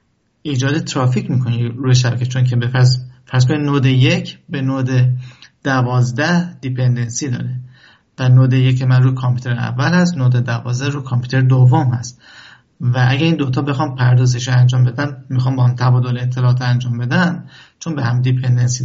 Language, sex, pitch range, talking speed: Persian, male, 125-140 Hz, 160 wpm